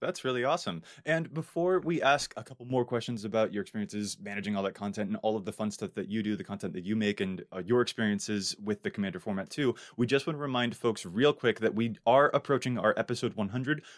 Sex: male